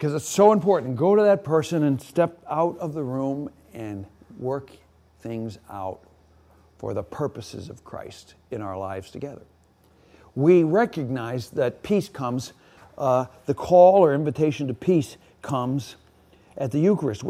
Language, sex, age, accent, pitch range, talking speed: English, male, 60-79, American, 115-165 Hz, 150 wpm